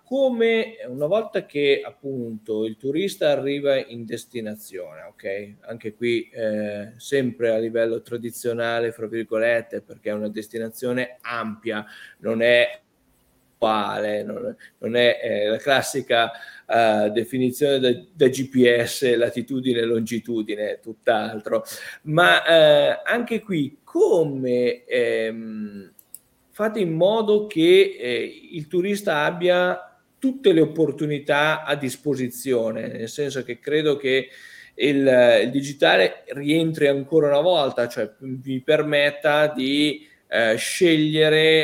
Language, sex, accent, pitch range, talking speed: Italian, male, native, 120-165 Hz, 115 wpm